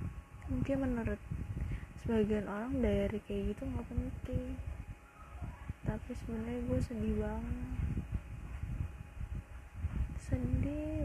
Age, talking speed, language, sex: 20-39, 80 wpm, Indonesian, female